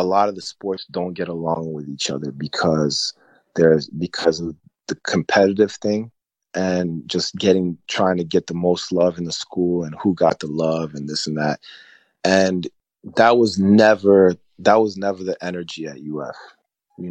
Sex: male